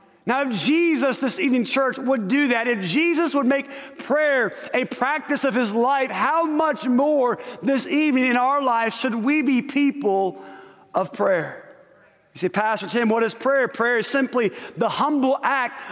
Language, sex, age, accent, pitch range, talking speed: English, male, 30-49, American, 225-275 Hz, 175 wpm